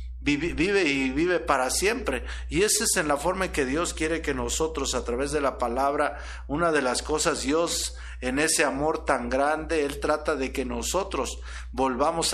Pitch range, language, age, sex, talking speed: 115-165 Hz, Spanish, 50-69, male, 185 wpm